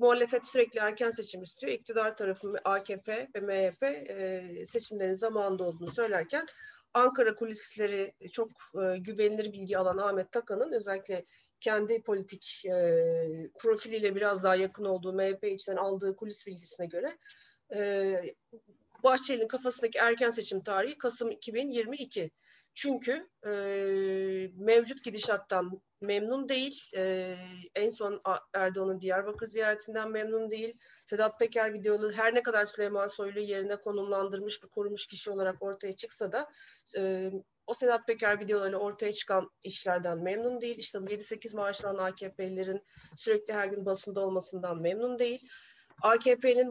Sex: female